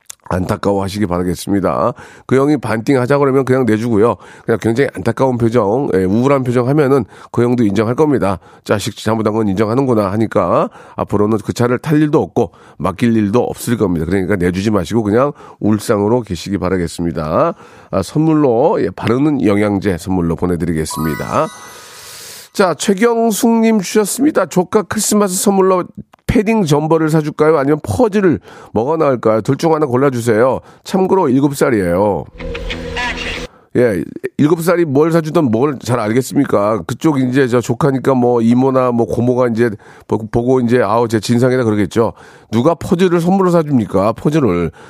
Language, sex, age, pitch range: Korean, male, 40-59, 110-155 Hz